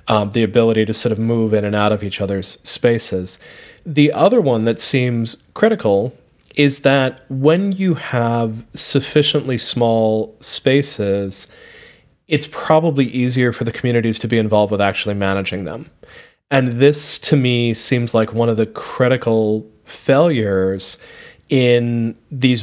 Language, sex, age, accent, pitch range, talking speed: English, male, 30-49, American, 110-135 Hz, 145 wpm